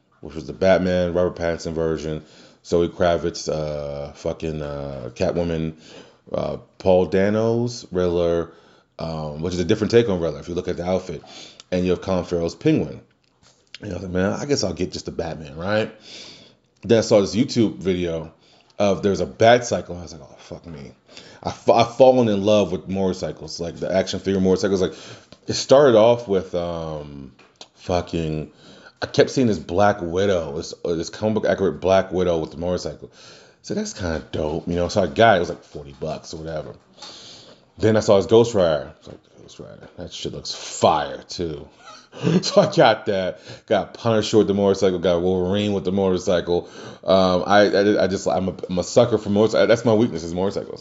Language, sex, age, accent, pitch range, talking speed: English, male, 30-49, American, 85-105 Hz, 195 wpm